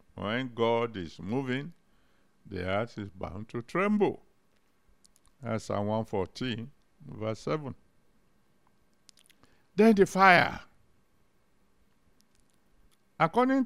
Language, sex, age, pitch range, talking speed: English, male, 60-79, 100-130 Hz, 85 wpm